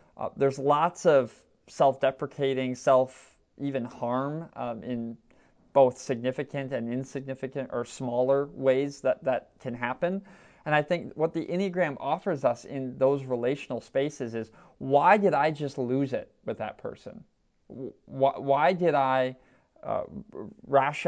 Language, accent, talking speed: English, American, 135 wpm